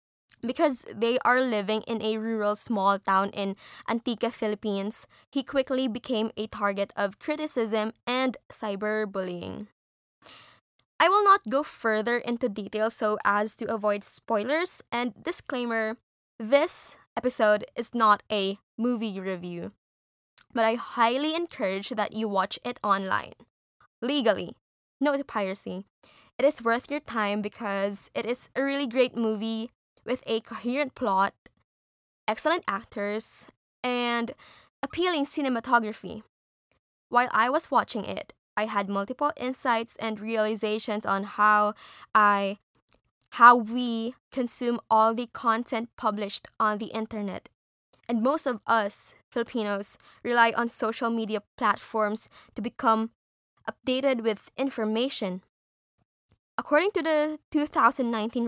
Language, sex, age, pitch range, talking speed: English, female, 20-39, 210-250 Hz, 120 wpm